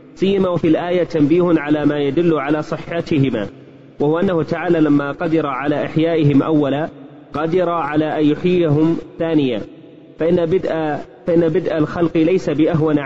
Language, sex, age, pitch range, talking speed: Arabic, male, 30-49, 145-165 Hz, 135 wpm